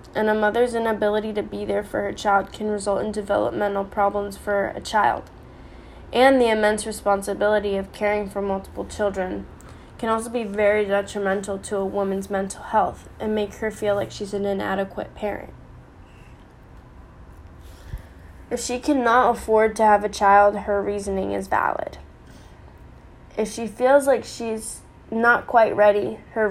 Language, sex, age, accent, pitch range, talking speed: English, female, 10-29, American, 200-235 Hz, 150 wpm